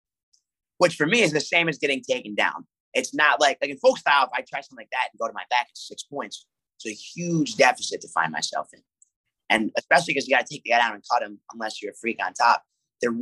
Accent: American